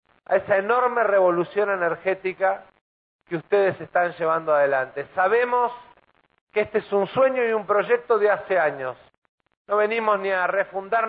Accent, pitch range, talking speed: Argentinian, 170-215 Hz, 145 wpm